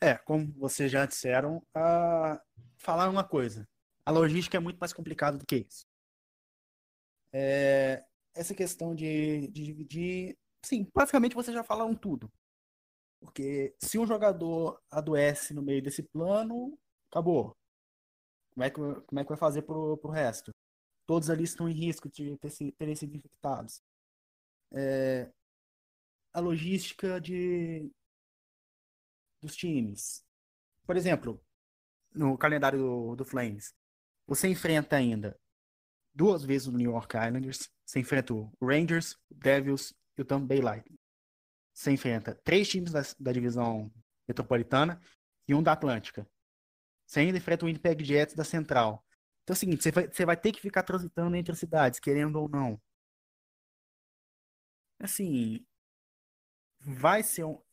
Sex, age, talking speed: male, 20-39, 140 wpm